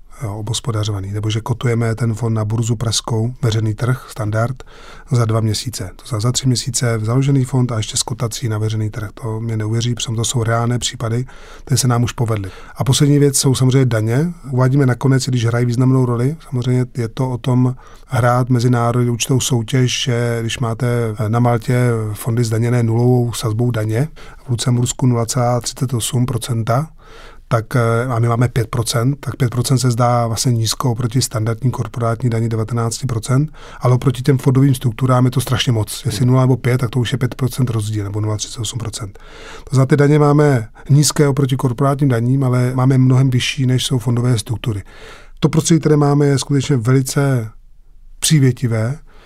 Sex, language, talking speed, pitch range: male, Czech, 160 wpm, 115-130 Hz